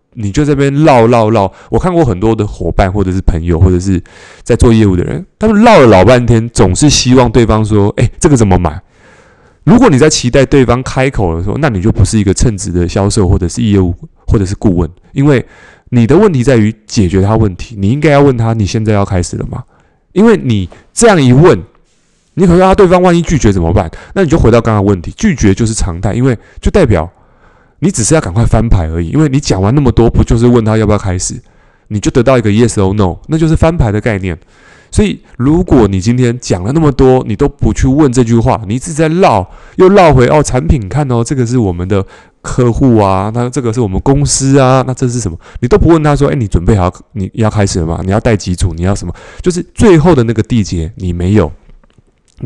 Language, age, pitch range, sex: Chinese, 20-39, 100-135 Hz, male